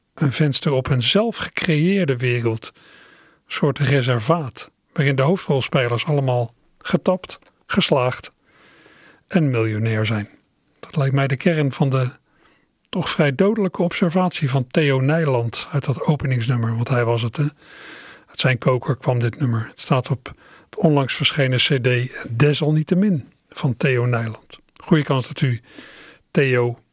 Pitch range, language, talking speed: 125-155 Hz, Dutch, 145 wpm